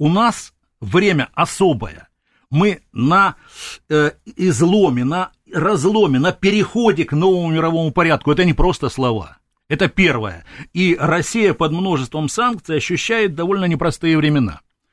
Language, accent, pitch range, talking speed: Russian, native, 140-180 Hz, 125 wpm